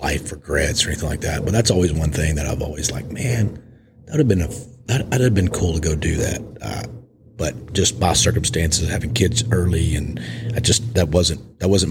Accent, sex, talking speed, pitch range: American, male, 230 wpm, 95-125 Hz